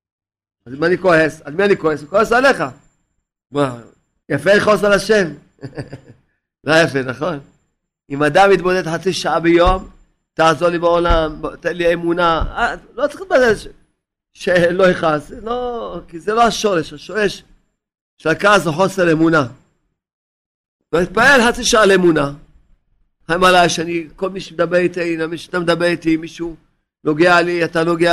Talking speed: 140 wpm